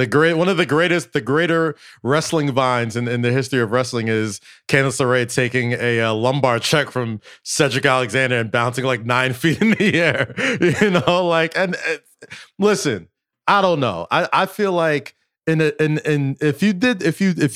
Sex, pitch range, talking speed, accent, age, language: male, 125-165 Hz, 200 wpm, American, 20-39, English